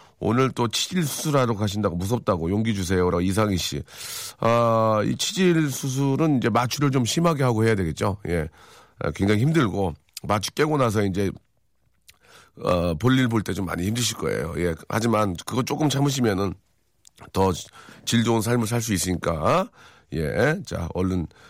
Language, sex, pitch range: Korean, male, 95-145 Hz